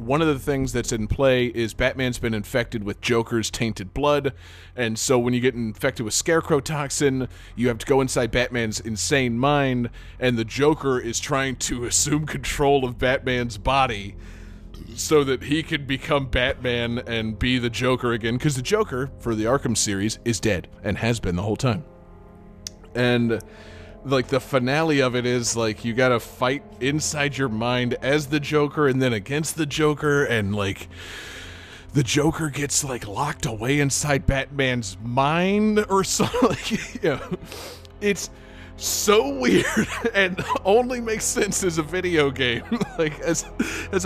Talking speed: 165 wpm